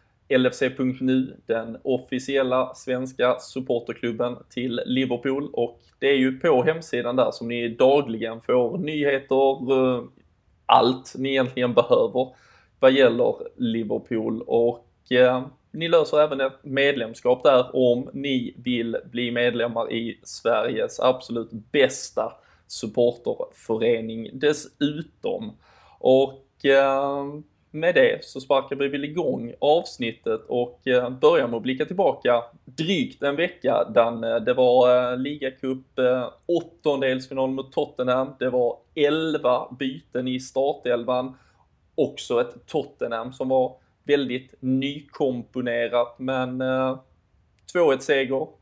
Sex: male